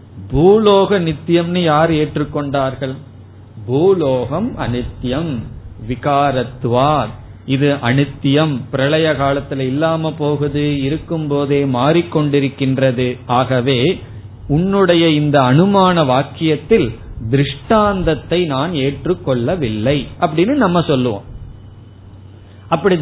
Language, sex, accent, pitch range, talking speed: Tamil, male, native, 130-170 Hz, 75 wpm